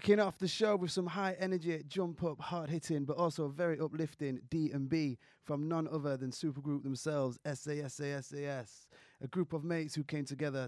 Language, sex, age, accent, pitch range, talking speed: English, male, 20-39, British, 125-145 Hz, 155 wpm